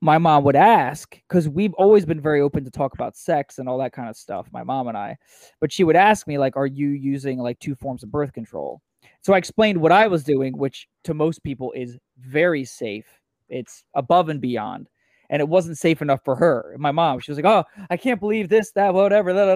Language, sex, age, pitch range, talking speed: English, male, 20-39, 135-190 Hz, 240 wpm